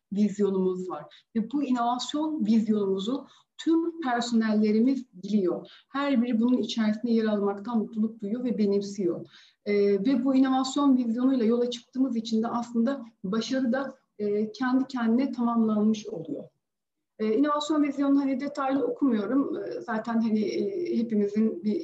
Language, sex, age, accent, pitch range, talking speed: Turkish, female, 40-59, native, 200-260 Hz, 130 wpm